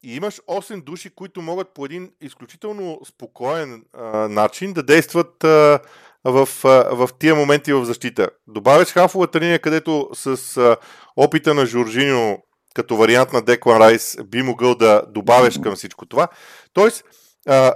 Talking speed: 150 wpm